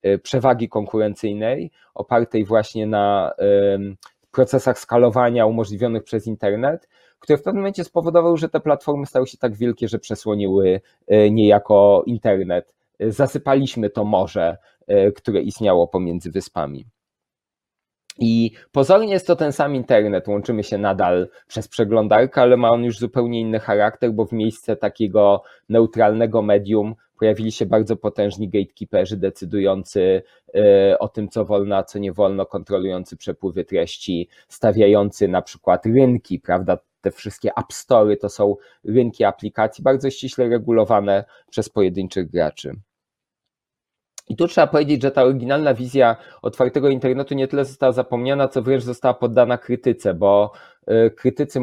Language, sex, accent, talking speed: Polish, male, native, 135 wpm